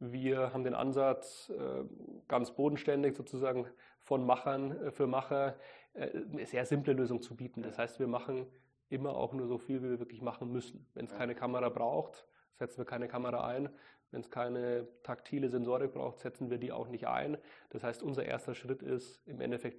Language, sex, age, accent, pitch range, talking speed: German, male, 30-49, German, 120-135 Hz, 185 wpm